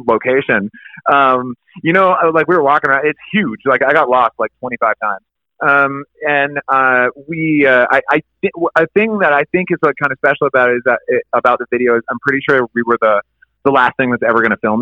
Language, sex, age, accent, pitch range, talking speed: English, male, 30-49, American, 135-165 Hz, 245 wpm